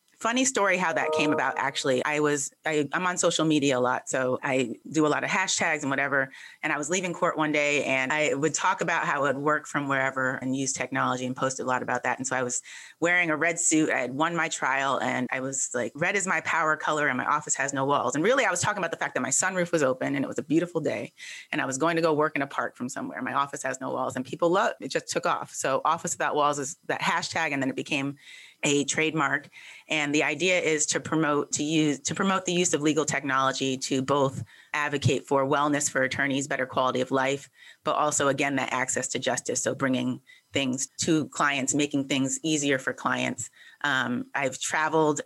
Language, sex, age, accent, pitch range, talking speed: English, female, 30-49, American, 135-160 Hz, 240 wpm